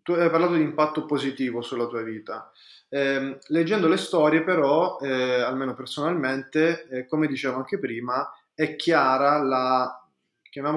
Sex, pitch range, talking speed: male, 130-155 Hz, 135 wpm